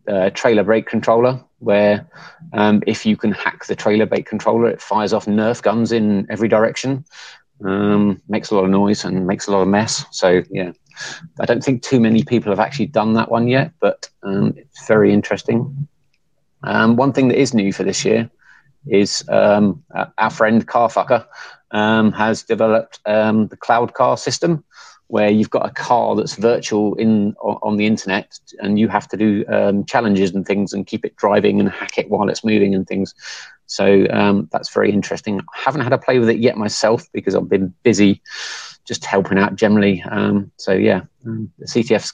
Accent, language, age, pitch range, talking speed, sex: British, English, 30-49, 100-115 Hz, 195 wpm, male